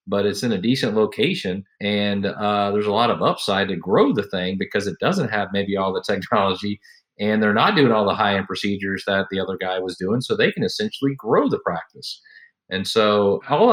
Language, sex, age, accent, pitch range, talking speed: English, male, 40-59, American, 100-145 Hz, 220 wpm